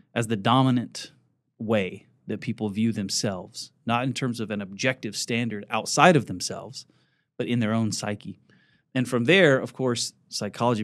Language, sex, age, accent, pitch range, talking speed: English, male, 30-49, American, 105-130 Hz, 160 wpm